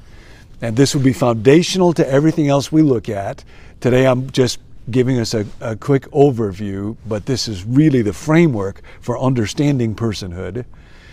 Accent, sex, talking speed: American, male, 155 wpm